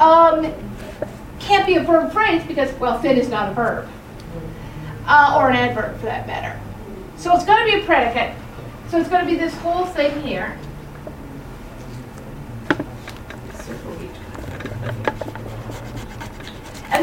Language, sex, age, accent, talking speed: English, female, 50-69, American, 130 wpm